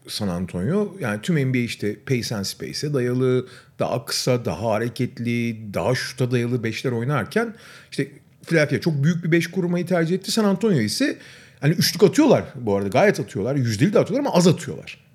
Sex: male